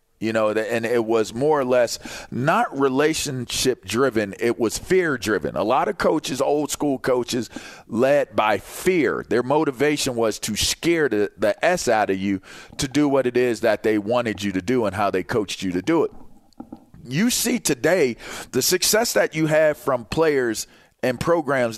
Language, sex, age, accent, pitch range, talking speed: English, male, 40-59, American, 120-165 Hz, 185 wpm